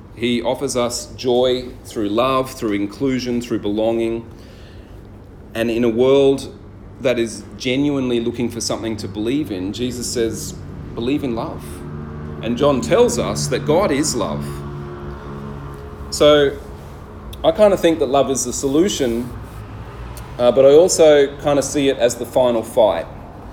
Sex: male